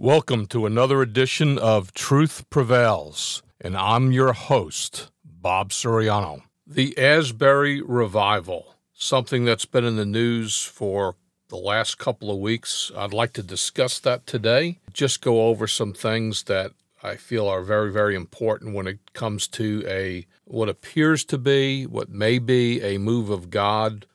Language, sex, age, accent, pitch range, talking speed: English, male, 50-69, American, 100-120 Hz, 155 wpm